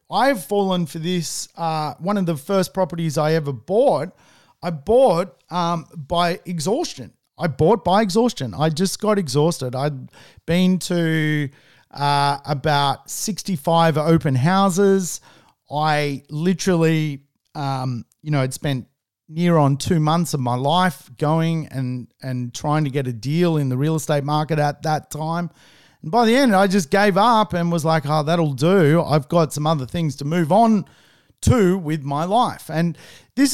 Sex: male